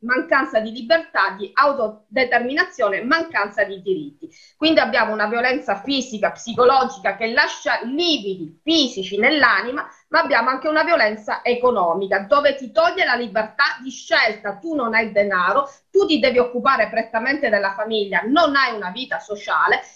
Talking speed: 145 wpm